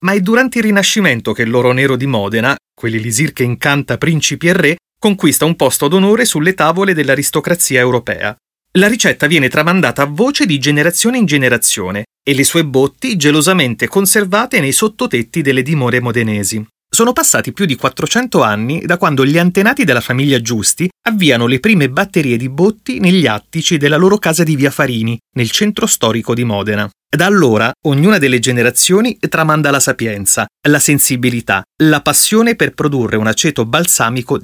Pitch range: 120-175 Hz